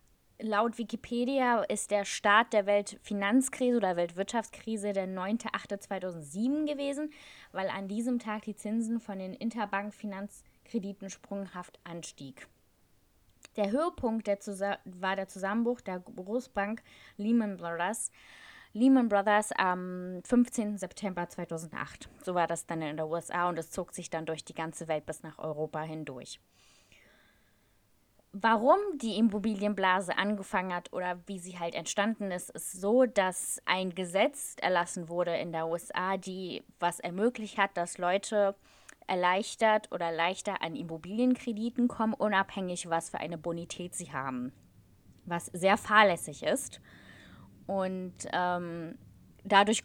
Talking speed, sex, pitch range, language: 130 wpm, female, 175-215 Hz, German